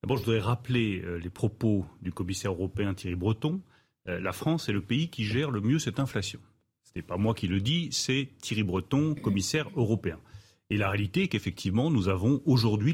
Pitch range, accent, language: 100-135 Hz, French, French